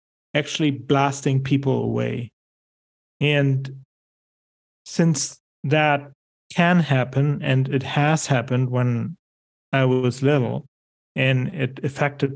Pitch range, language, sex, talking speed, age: 125-140 Hz, English, male, 95 wpm, 40-59